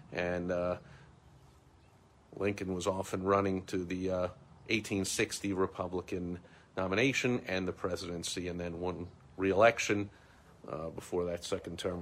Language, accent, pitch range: English, American, 90-110 Hz